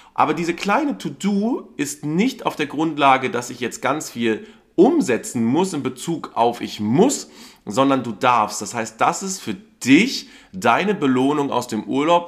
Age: 40-59